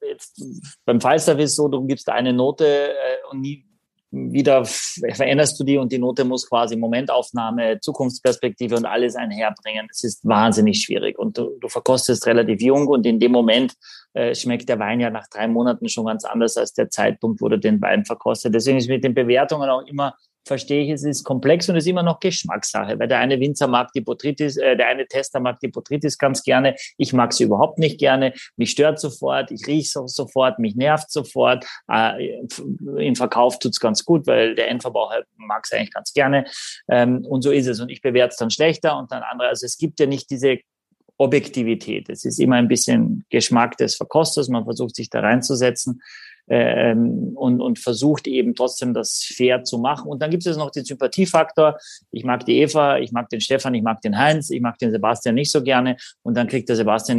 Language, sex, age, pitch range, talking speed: German, male, 30-49, 120-150 Hz, 205 wpm